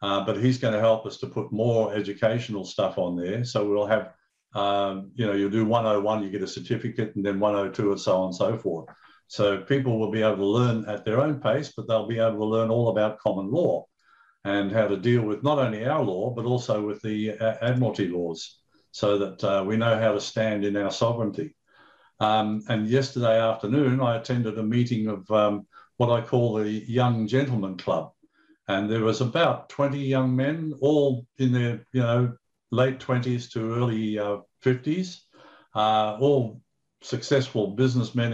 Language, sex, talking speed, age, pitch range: English, male, 195 wpm, 50-69, 105-125 Hz